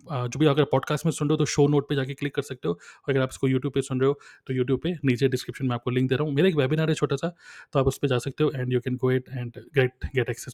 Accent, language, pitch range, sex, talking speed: native, Hindi, 130-165 Hz, male, 335 wpm